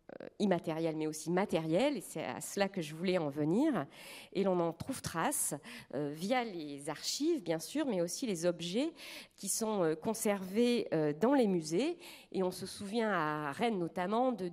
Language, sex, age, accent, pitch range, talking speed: French, female, 40-59, French, 160-220 Hz, 180 wpm